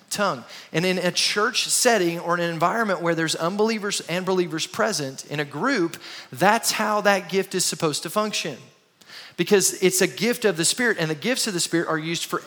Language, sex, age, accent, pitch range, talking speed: English, male, 30-49, American, 170-215 Hz, 200 wpm